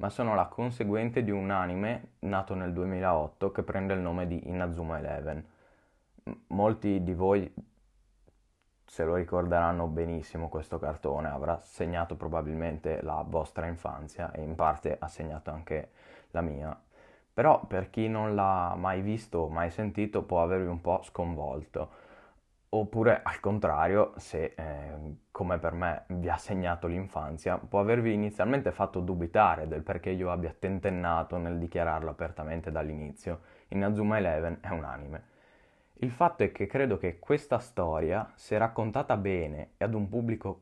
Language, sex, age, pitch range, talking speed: Italian, male, 20-39, 85-105 Hz, 150 wpm